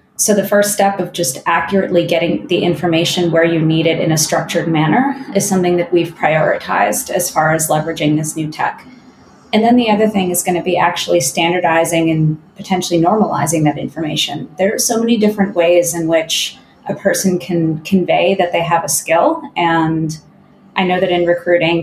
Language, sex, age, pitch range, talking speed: English, female, 20-39, 160-185 Hz, 190 wpm